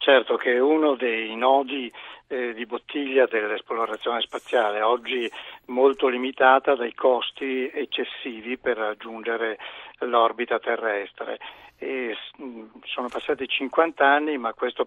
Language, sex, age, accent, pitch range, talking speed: Italian, male, 60-79, native, 120-140 Hz, 110 wpm